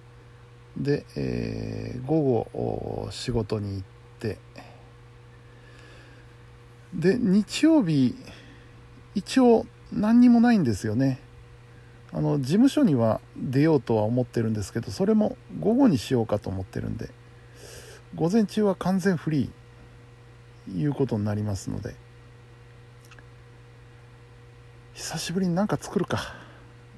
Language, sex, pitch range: Japanese, male, 120-135 Hz